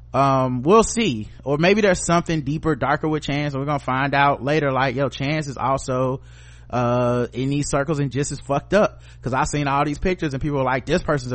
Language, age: English, 30-49